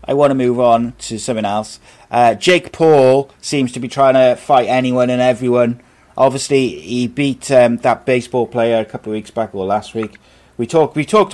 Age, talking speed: 30-49, 210 wpm